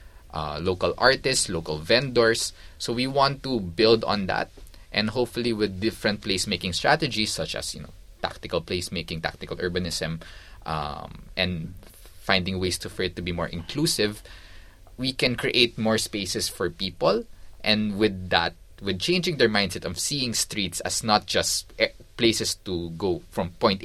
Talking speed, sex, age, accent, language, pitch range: 155 wpm, male, 20-39, native, Filipino, 85-110 Hz